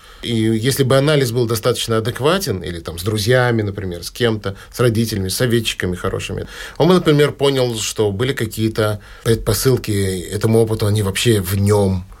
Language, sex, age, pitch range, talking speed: Russian, male, 30-49, 100-135 Hz, 160 wpm